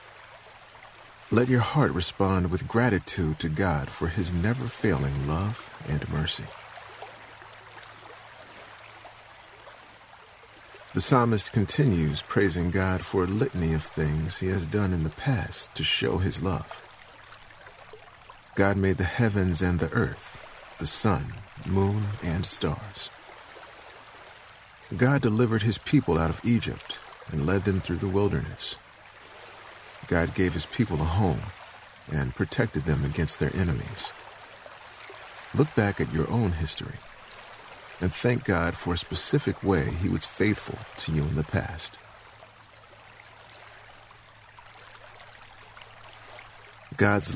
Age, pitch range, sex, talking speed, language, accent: 40-59, 85-115 Hz, male, 120 wpm, English, American